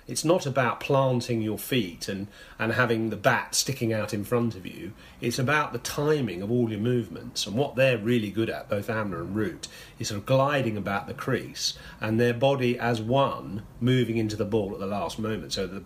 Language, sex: English, male